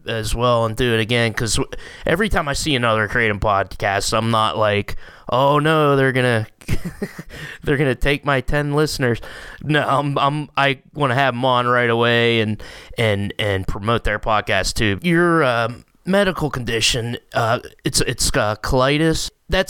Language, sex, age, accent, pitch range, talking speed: English, male, 20-39, American, 110-135 Hz, 170 wpm